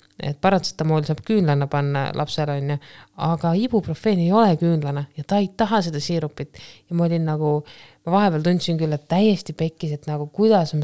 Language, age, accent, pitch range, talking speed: English, 20-39, Finnish, 145-170 Hz, 175 wpm